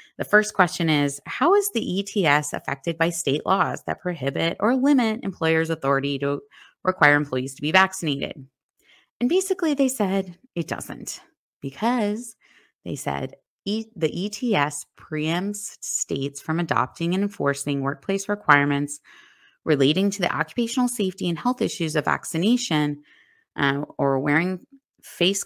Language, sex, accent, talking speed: English, female, American, 135 wpm